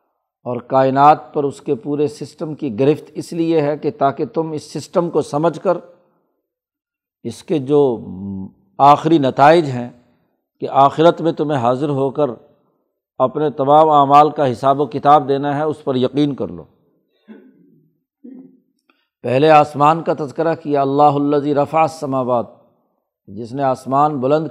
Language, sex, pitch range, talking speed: Urdu, male, 135-160 Hz, 145 wpm